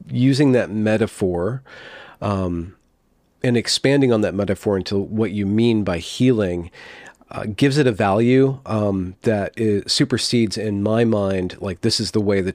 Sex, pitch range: male, 95-125 Hz